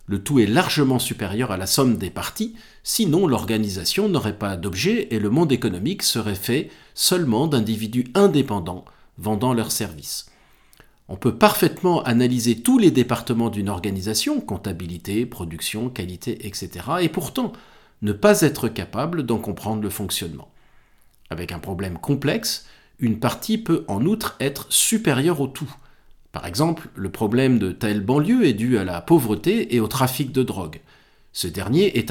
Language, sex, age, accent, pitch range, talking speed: French, male, 40-59, French, 105-155 Hz, 155 wpm